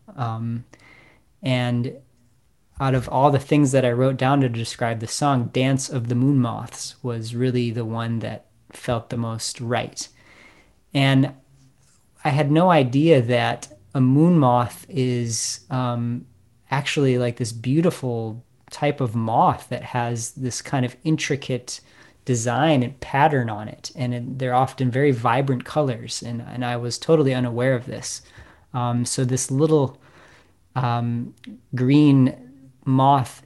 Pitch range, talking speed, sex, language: 120-135 Hz, 145 wpm, male, English